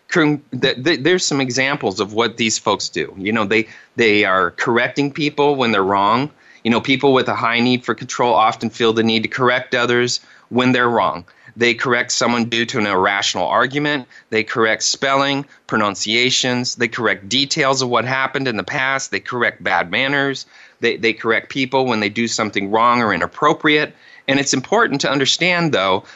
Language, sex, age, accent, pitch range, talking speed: English, male, 30-49, American, 115-140 Hz, 180 wpm